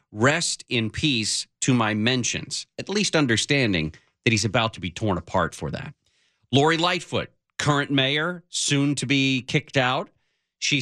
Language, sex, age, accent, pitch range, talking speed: English, male, 40-59, American, 105-145 Hz, 155 wpm